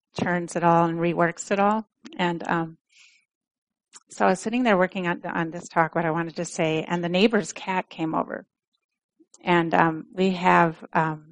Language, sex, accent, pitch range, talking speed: English, female, American, 165-225 Hz, 185 wpm